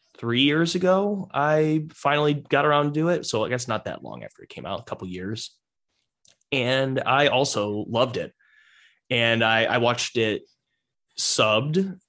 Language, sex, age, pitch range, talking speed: English, male, 20-39, 105-125 Hz, 175 wpm